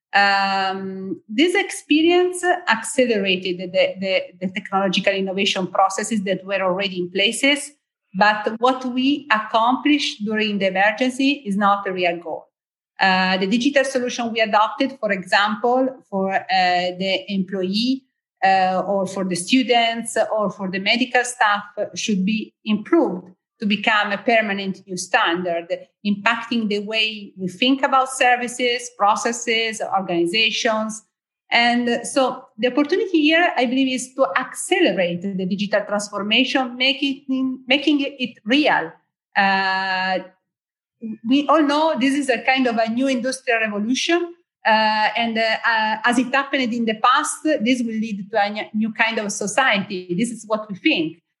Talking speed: 140 wpm